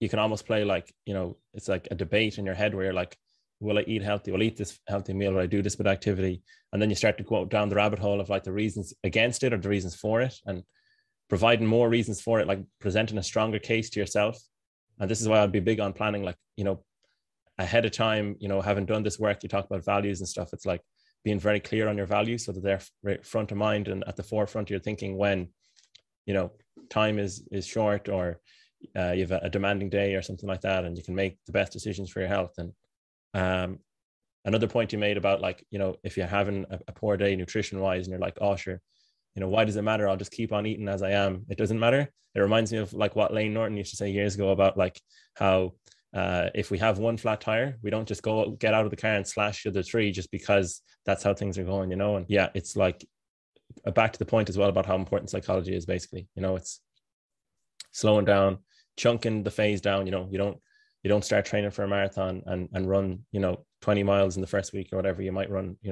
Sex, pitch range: male, 95-105 Hz